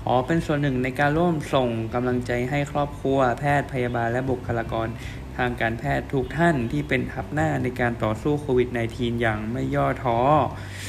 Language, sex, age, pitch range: Thai, male, 20-39, 105-135 Hz